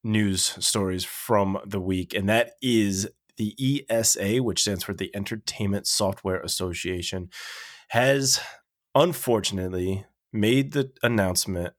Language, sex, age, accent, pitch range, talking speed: English, male, 20-39, American, 95-110 Hz, 110 wpm